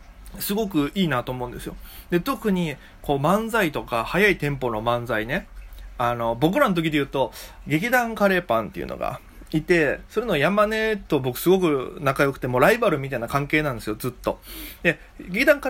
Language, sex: Japanese, male